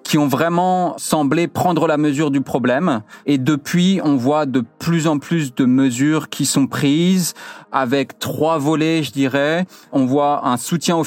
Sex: male